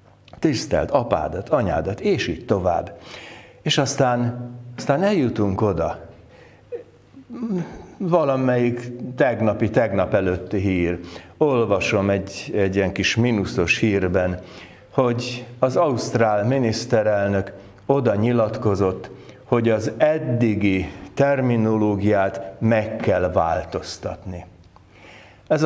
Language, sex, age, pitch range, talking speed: Hungarian, male, 60-79, 95-125 Hz, 85 wpm